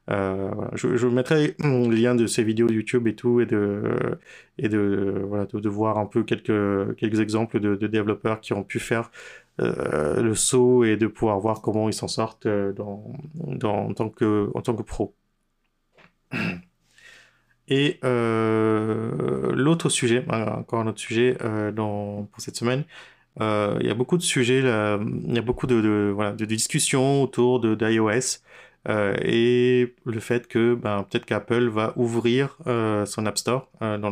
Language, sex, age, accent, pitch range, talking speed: French, male, 30-49, French, 105-125 Hz, 185 wpm